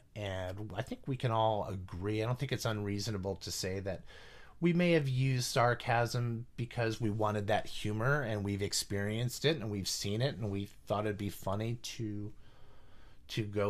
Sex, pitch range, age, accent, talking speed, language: male, 100-115 Hz, 30-49, American, 185 wpm, English